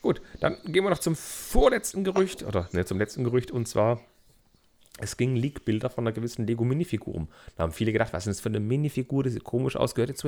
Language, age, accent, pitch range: German, 40-59, German, 100-135 Hz